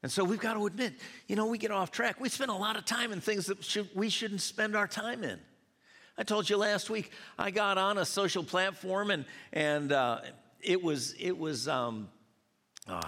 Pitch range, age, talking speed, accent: 155-215 Hz, 50-69, 215 wpm, American